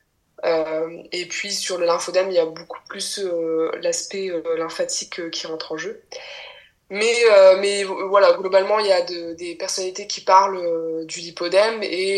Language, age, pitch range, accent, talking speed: French, 20-39, 175-210 Hz, French, 180 wpm